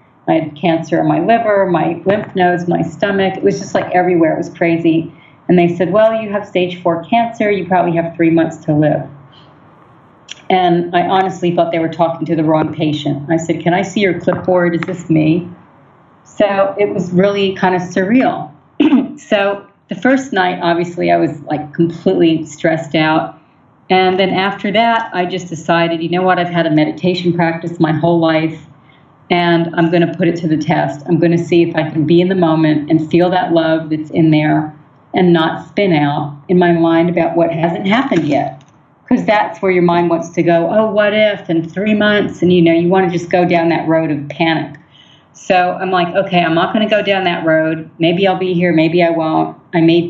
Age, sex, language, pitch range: 40-59, female, English, 160-185 Hz